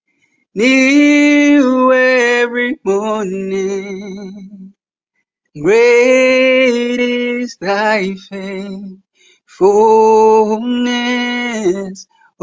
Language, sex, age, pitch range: English, male, 30-49, 195-260 Hz